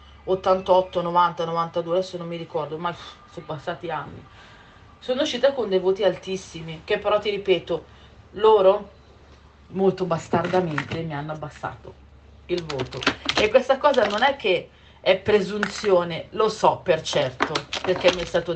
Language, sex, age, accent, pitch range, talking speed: Italian, female, 40-59, native, 170-195 Hz, 145 wpm